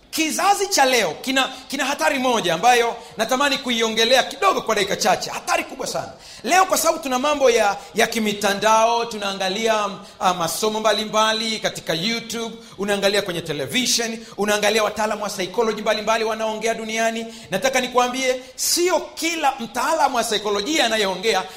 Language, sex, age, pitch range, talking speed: Swahili, male, 40-59, 225-320 Hz, 140 wpm